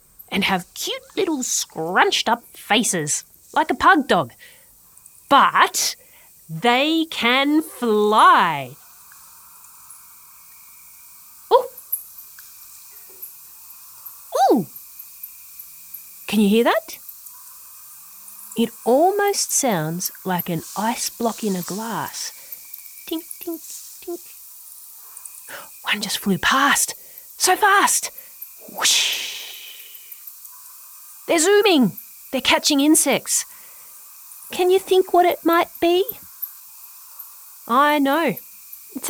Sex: female